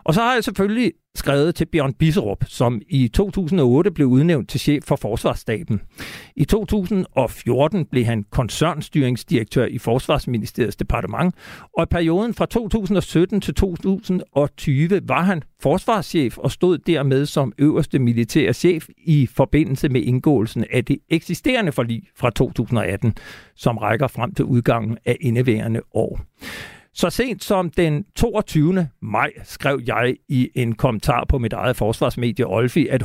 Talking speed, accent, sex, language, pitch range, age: 140 wpm, native, male, Danish, 125-170 Hz, 60-79